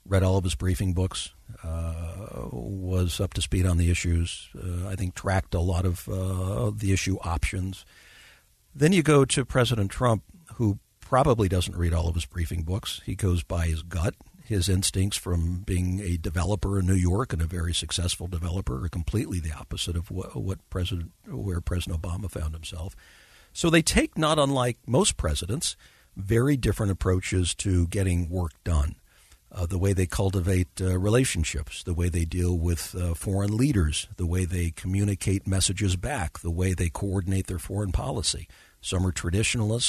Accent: American